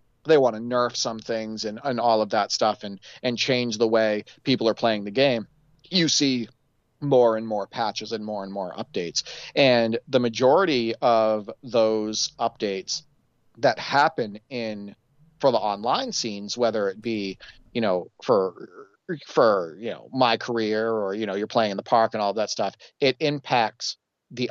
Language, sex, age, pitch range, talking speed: English, male, 30-49, 105-125 Hz, 175 wpm